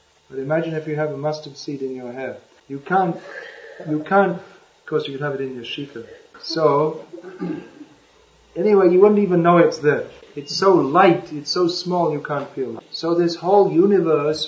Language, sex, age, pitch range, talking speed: English, male, 30-49, 135-165 Hz, 190 wpm